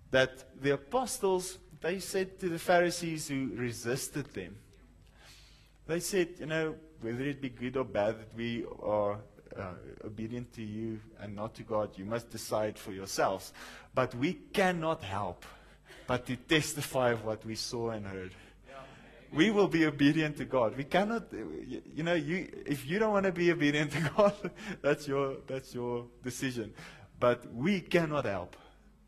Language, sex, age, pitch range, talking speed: English, male, 30-49, 120-180 Hz, 160 wpm